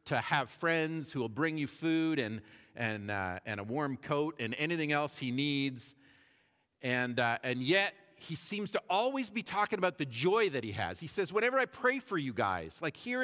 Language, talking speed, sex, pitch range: English, 210 wpm, male, 135-185 Hz